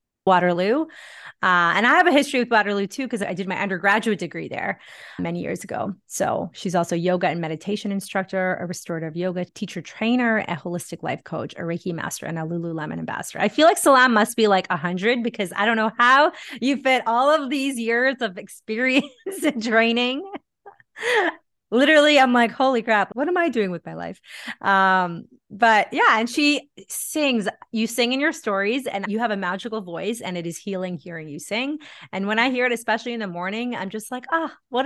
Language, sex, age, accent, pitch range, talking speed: English, female, 20-39, American, 180-245 Hz, 200 wpm